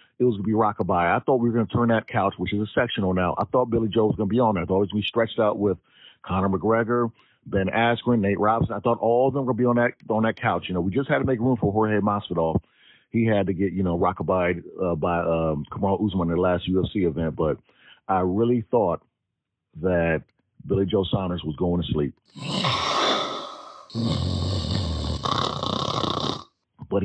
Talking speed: 210 wpm